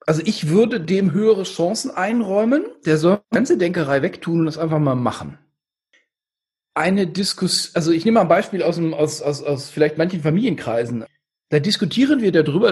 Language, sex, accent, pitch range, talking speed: German, male, German, 155-210 Hz, 180 wpm